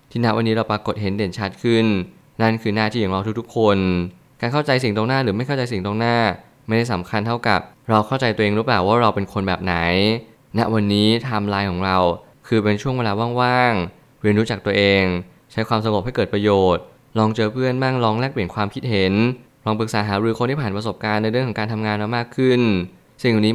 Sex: male